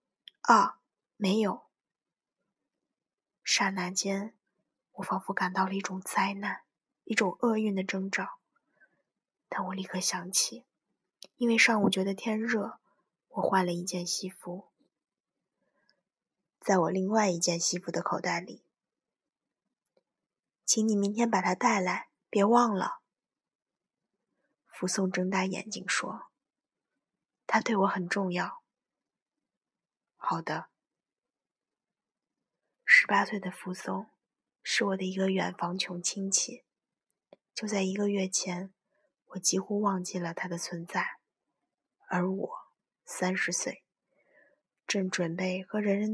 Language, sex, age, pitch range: Chinese, female, 20-39, 185-205 Hz